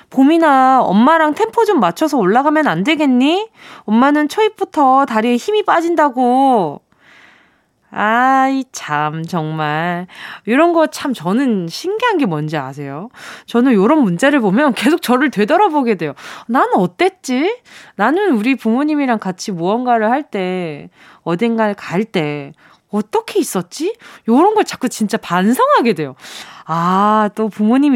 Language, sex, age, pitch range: Korean, female, 20-39, 195-305 Hz